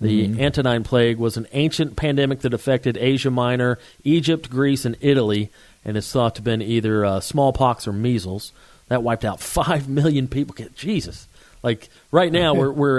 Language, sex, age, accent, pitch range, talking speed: English, male, 40-59, American, 110-140 Hz, 175 wpm